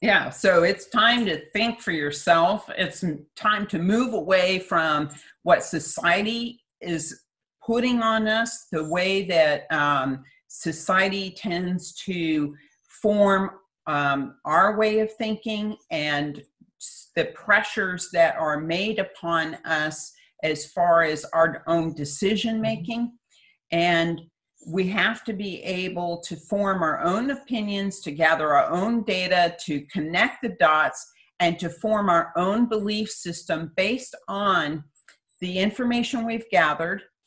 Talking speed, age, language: 130 wpm, 50-69, English